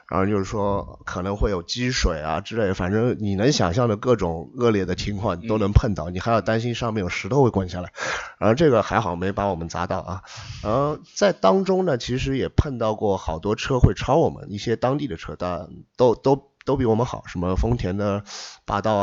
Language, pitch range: Chinese, 95-120 Hz